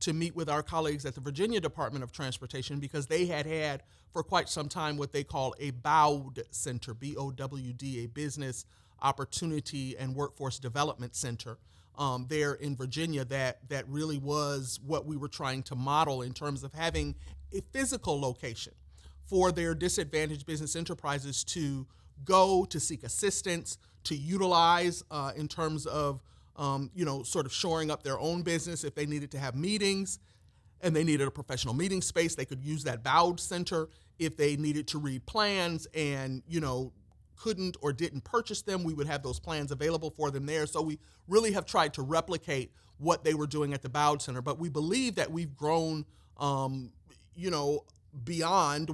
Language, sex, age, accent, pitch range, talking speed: English, male, 40-59, American, 135-160 Hz, 180 wpm